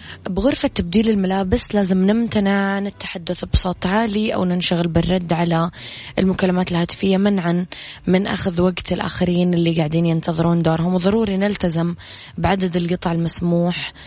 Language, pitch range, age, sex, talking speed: Arabic, 165-195 Hz, 20-39, female, 120 wpm